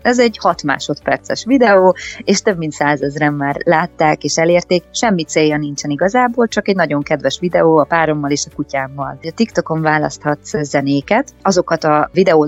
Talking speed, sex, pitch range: 165 wpm, female, 150-190 Hz